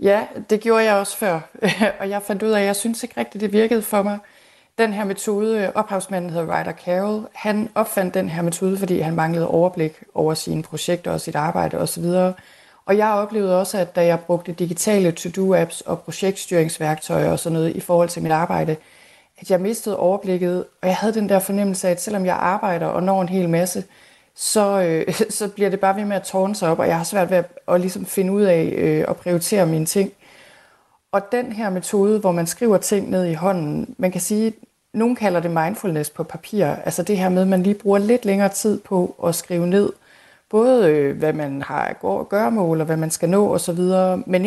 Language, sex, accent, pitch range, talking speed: Danish, female, native, 175-205 Hz, 220 wpm